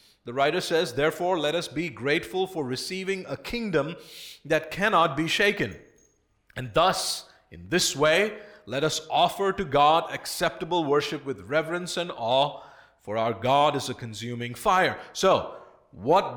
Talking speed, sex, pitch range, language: 150 wpm, male, 135-185 Hz, English